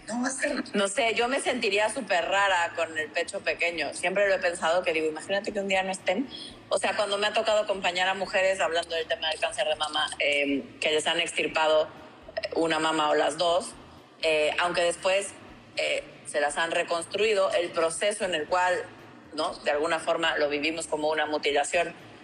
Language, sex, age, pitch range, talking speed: Spanish, female, 30-49, 160-215 Hz, 195 wpm